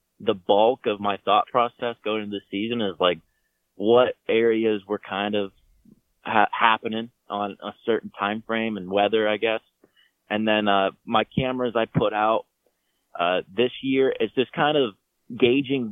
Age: 20-39